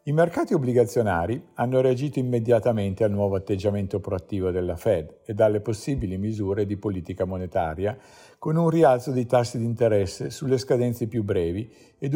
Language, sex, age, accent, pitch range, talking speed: Italian, male, 50-69, native, 100-135 Hz, 155 wpm